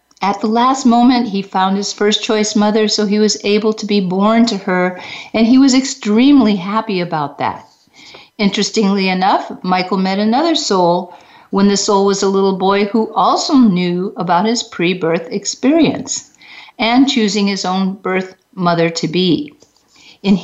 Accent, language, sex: American, English, female